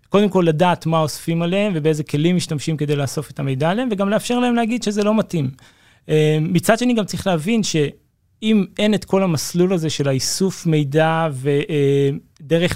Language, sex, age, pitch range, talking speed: Hebrew, male, 20-39, 145-180 Hz, 175 wpm